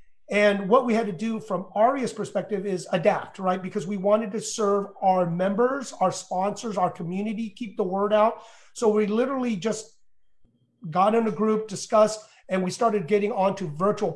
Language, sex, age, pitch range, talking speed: English, male, 30-49, 195-225 Hz, 180 wpm